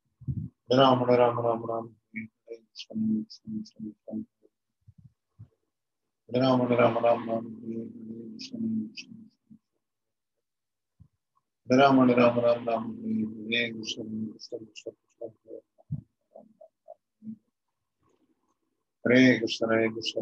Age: 50-69